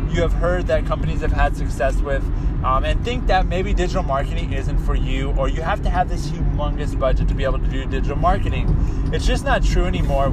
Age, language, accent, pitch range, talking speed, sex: 20-39, English, American, 125-170 Hz, 225 wpm, male